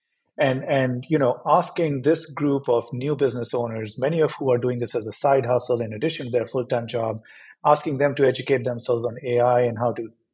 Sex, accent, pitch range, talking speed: male, Indian, 115-145 Hz, 215 wpm